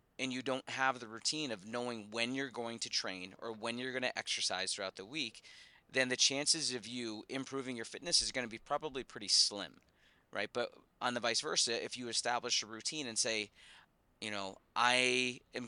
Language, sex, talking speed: English, male, 205 wpm